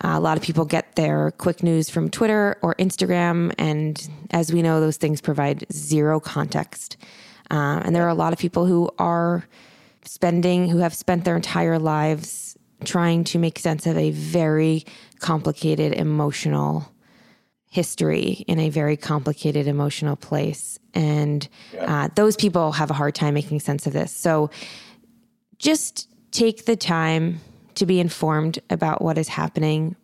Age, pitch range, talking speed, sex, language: 20-39, 155-180 Hz, 160 wpm, female, English